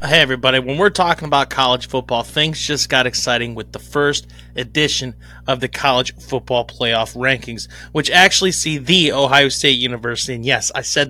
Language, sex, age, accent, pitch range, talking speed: English, male, 30-49, American, 135-180 Hz, 180 wpm